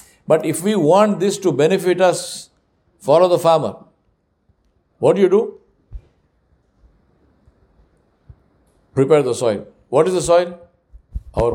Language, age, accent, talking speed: English, 60-79, Indian, 120 wpm